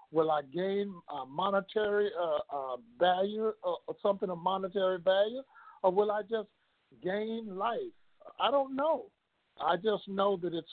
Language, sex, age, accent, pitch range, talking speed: English, male, 60-79, American, 165-220 Hz, 150 wpm